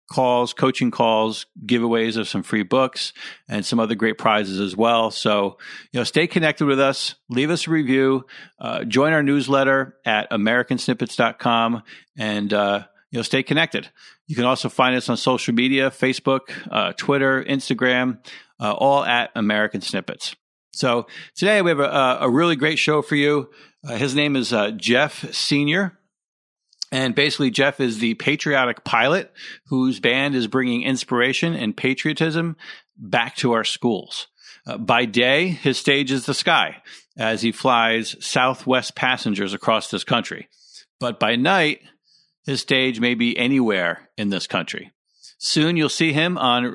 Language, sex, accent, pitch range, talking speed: English, male, American, 115-145 Hz, 160 wpm